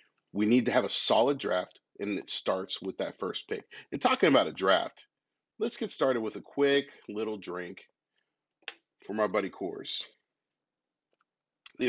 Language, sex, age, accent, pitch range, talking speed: English, male, 40-59, American, 100-130 Hz, 160 wpm